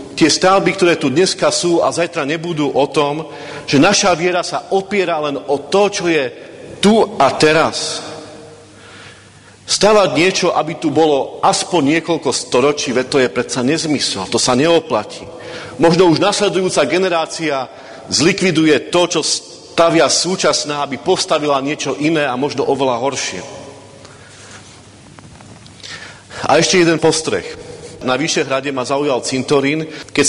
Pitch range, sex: 125-165 Hz, male